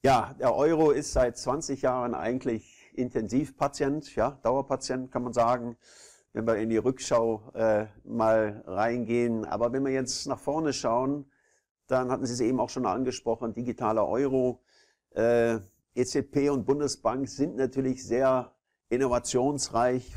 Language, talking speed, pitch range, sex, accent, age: German, 140 wpm, 110-135 Hz, male, German, 50-69